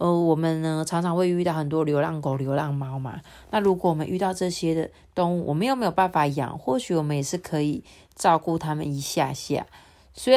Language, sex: Chinese, female